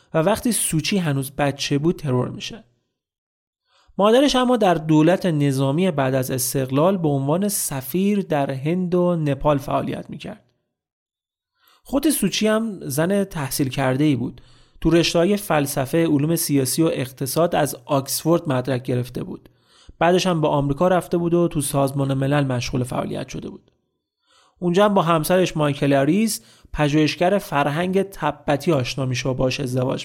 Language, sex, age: Persian, male, 30-49